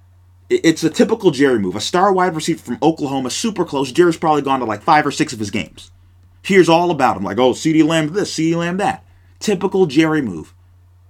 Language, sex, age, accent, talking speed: English, male, 30-49, American, 210 wpm